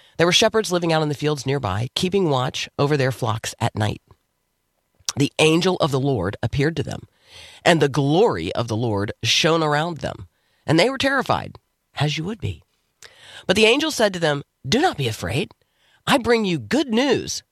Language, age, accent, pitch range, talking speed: English, 40-59, American, 105-155 Hz, 190 wpm